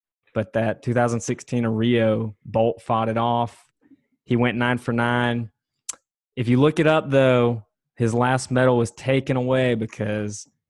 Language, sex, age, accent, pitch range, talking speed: English, male, 20-39, American, 110-125 Hz, 150 wpm